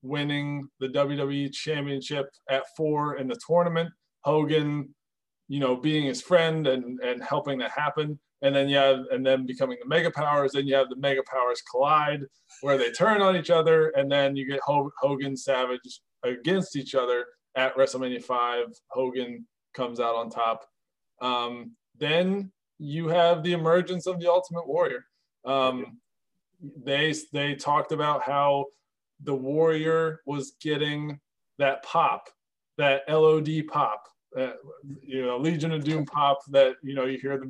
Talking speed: 155 wpm